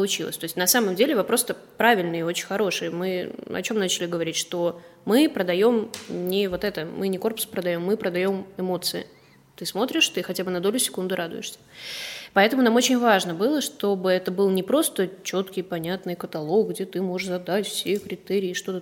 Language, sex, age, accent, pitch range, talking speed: Russian, female, 20-39, native, 180-215 Hz, 180 wpm